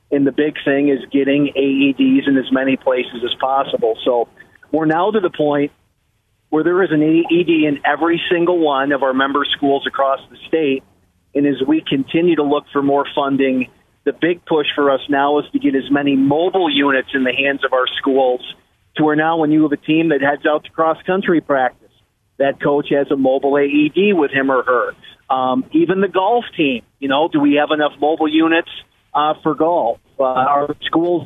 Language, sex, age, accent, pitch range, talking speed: English, male, 40-59, American, 135-165 Hz, 205 wpm